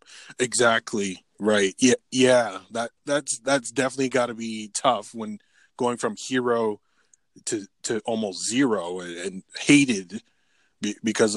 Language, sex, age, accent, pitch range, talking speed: English, male, 20-39, American, 115-145 Hz, 120 wpm